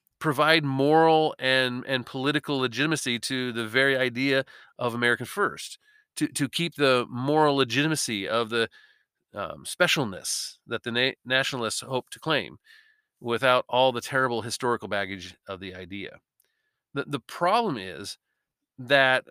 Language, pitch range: English, 120-155 Hz